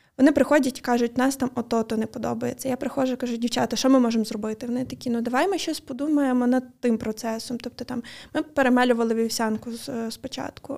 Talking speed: 200 wpm